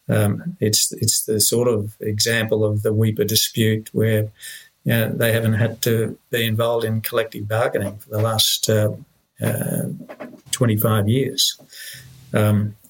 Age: 50-69